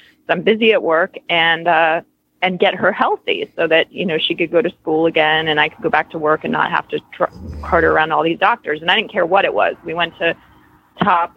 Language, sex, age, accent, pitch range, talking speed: English, female, 30-49, American, 160-200 Hz, 255 wpm